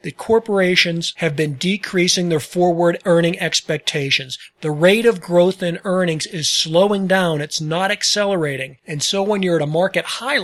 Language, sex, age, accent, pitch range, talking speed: English, male, 40-59, American, 165-195 Hz, 165 wpm